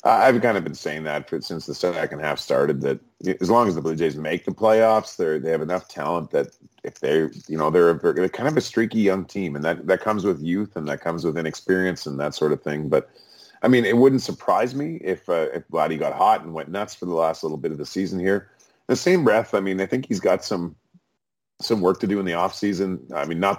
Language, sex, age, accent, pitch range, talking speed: English, male, 30-49, American, 80-100 Hz, 260 wpm